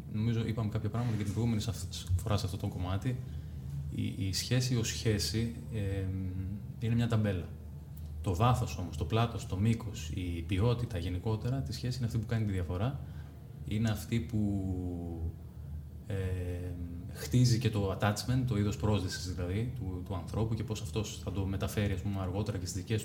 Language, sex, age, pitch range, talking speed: Greek, male, 20-39, 90-115 Hz, 170 wpm